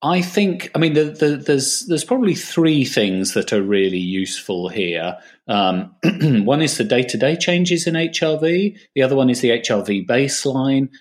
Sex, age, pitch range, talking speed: male, 40-59, 100-145 Hz, 170 wpm